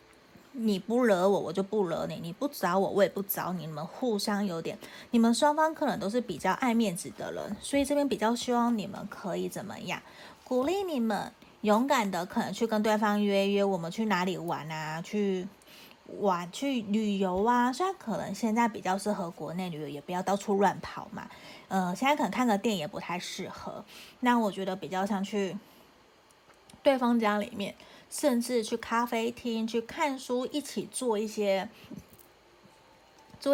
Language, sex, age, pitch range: Chinese, female, 30-49, 190-230 Hz